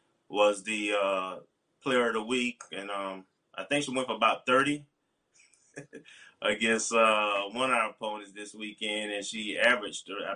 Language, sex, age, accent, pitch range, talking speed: English, male, 20-39, American, 100-120 Hz, 160 wpm